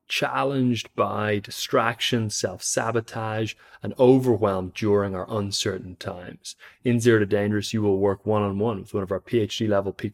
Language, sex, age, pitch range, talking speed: English, male, 20-39, 100-110 Hz, 140 wpm